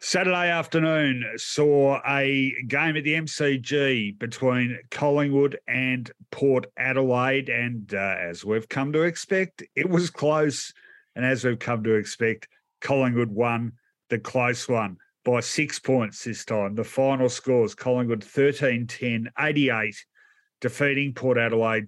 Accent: Australian